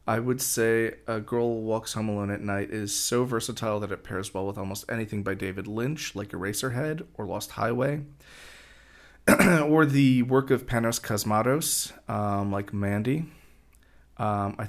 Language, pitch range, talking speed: English, 100-125 Hz, 155 wpm